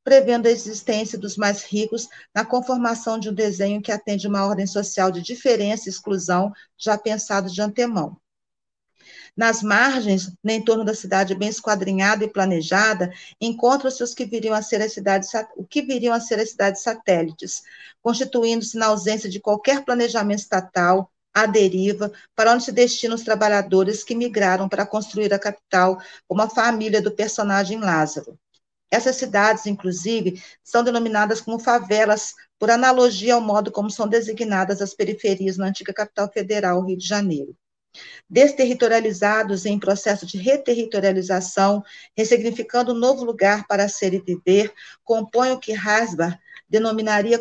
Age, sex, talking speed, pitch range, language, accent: 40-59, female, 145 wpm, 195-230 Hz, Portuguese, Brazilian